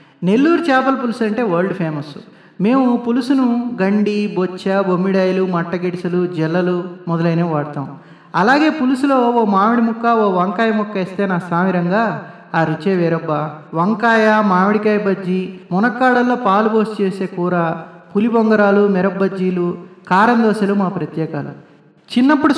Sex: male